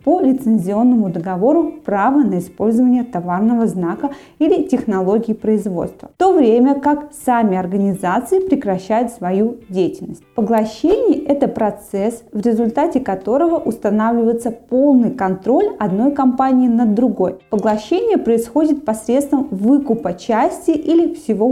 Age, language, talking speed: 20-39, Russian, 115 wpm